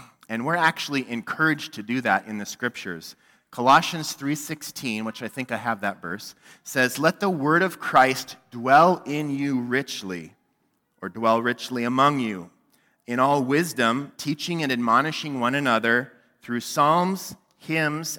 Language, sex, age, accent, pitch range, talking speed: English, male, 30-49, American, 120-150 Hz, 150 wpm